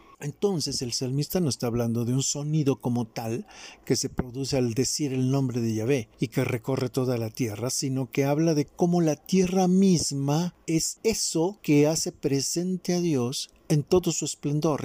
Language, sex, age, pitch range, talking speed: Spanish, male, 50-69, 125-160 Hz, 180 wpm